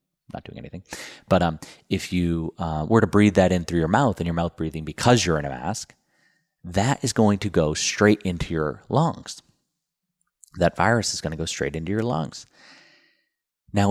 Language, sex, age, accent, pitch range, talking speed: English, male, 30-49, American, 80-105 Hz, 195 wpm